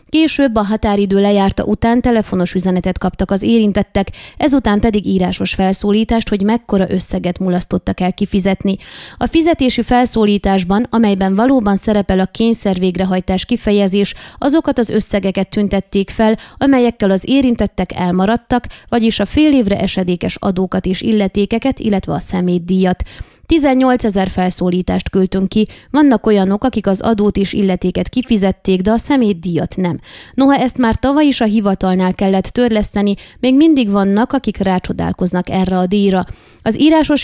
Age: 20-39